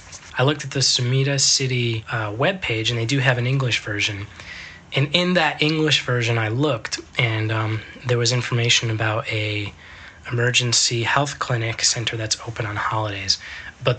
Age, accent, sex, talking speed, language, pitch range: 20-39, American, male, 165 wpm, English, 110-135 Hz